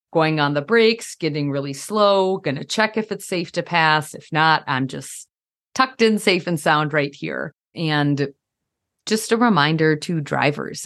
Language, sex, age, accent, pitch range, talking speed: English, female, 30-49, American, 140-175 Hz, 175 wpm